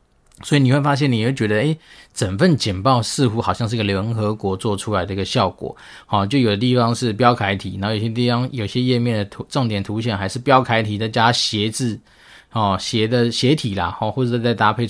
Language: Chinese